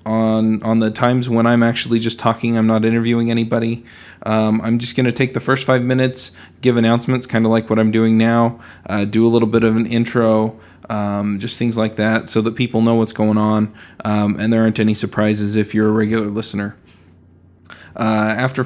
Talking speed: 205 wpm